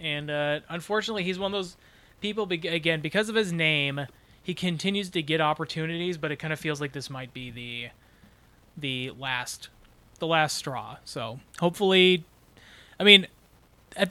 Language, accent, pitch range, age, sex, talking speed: English, American, 150-190 Hz, 20-39, male, 160 wpm